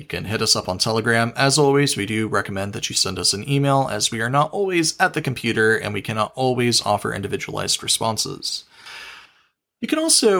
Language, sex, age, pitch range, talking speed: English, male, 30-49, 110-160 Hz, 210 wpm